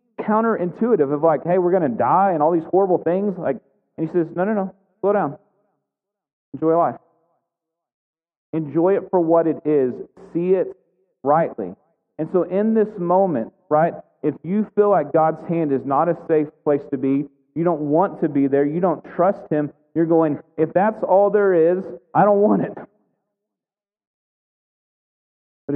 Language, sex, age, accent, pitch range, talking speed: English, male, 40-59, American, 145-190 Hz, 170 wpm